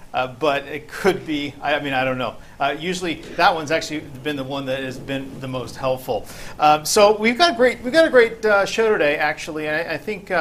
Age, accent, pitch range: 50-69, American, 140-180 Hz